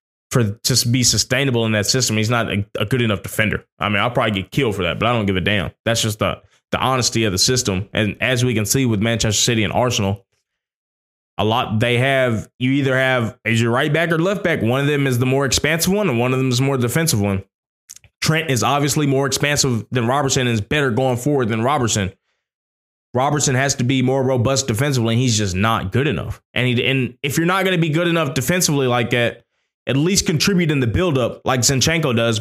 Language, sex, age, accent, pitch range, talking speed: English, male, 20-39, American, 115-140 Hz, 235 wpm